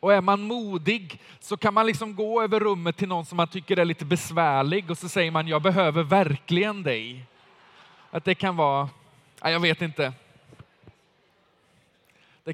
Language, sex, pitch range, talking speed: Swedish, male, 150-200 Hz, 170 wpm